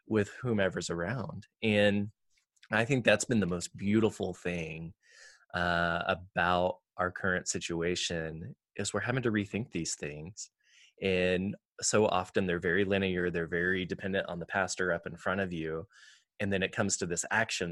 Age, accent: 20-39, American